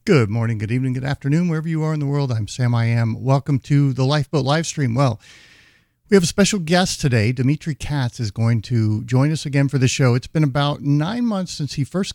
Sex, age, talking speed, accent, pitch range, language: male, 50-69, 230 wpm, American, 115-140 Hz, English